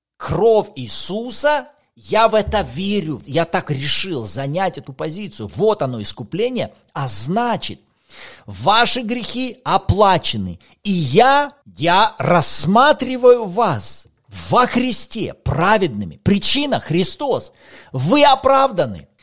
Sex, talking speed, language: male, 105 wpm, Russian